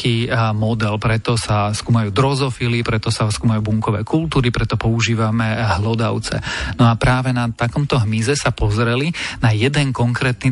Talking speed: 135 wpm